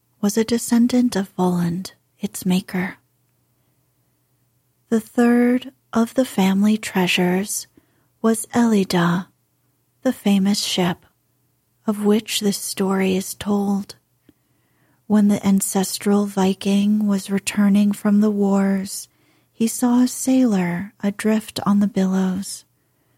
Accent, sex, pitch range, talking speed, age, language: American, female, 190-225 Hz, 105 wpm, 30-49, English